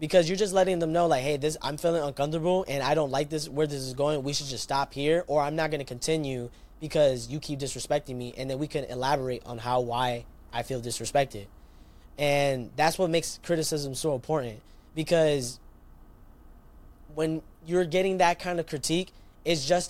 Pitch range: 140-175 Hz